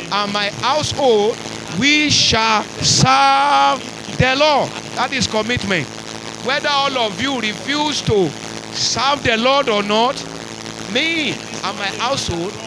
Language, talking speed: English, 125 wpm